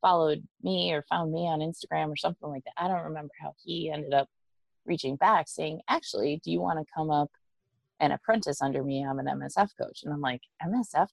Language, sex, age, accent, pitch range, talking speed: English, female, 20-39, American, 140-170 Hz, 215 wpm